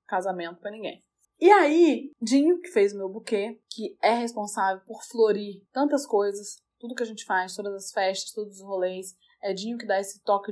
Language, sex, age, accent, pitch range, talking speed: Portuguese, female, 20-39, Brazilian, 205-260 Hz, 200 wpm